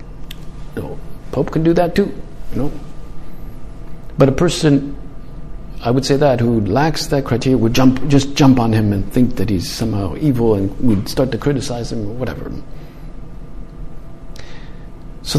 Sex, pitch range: male, 130-155 Hz